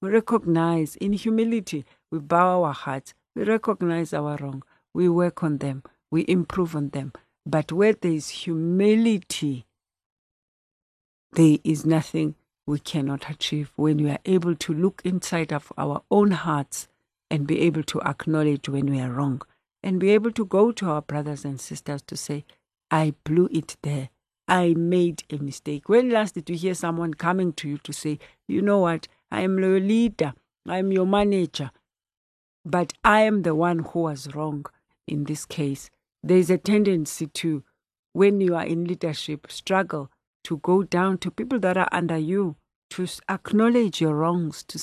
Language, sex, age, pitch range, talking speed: English, female, 60-79, 145-185 Hz, 175 wpm